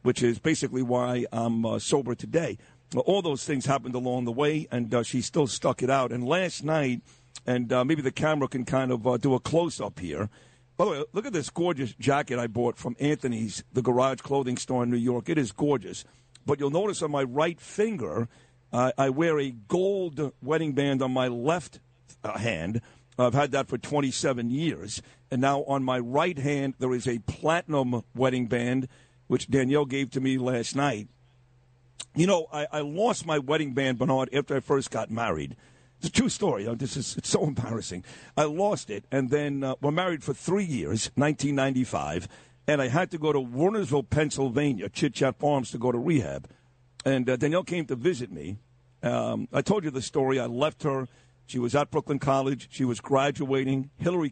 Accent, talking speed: American, 200 wpm